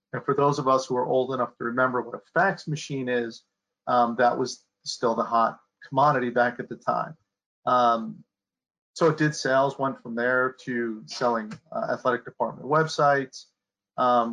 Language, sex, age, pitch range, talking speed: English, male, 40-59, 120-140 Hz, 175 wpm